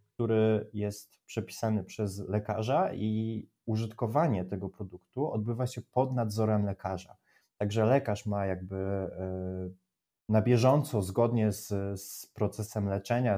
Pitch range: 100-120 Hz